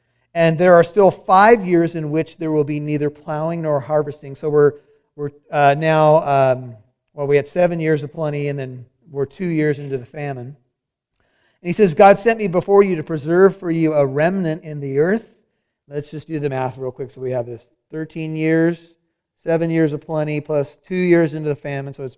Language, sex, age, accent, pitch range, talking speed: English, male, 40-59, American, 140-175 Hz, 210 wpm